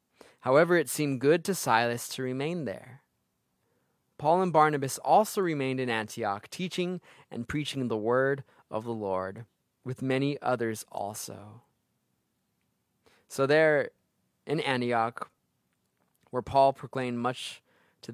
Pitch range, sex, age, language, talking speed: 110-140 Hz, male, 20-39, English, 120 wpm